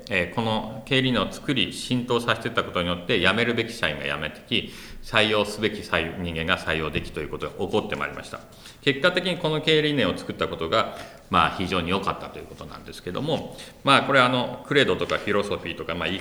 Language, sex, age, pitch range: Japanese, male, 40-59, 85-130 Hz